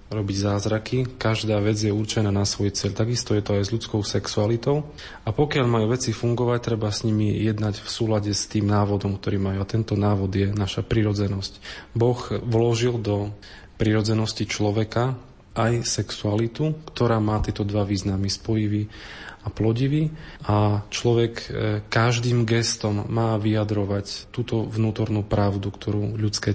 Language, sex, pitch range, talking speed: Slovak, male, 105-115 Hz, 145 wpm